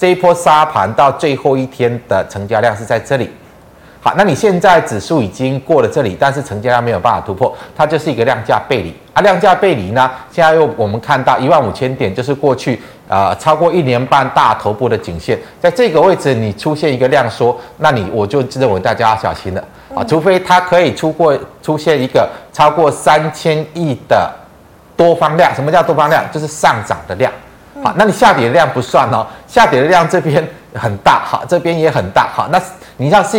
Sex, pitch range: male, 115-160 Hz